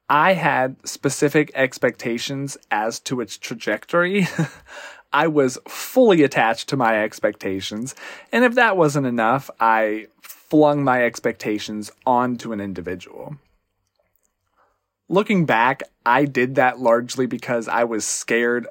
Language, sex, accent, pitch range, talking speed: English, male, American, 115-155 Hz, 120 wpm